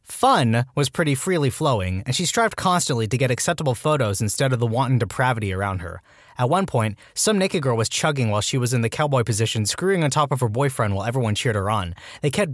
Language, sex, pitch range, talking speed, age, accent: English, male, 110-150 Hz, 230 wpm, 20-39, American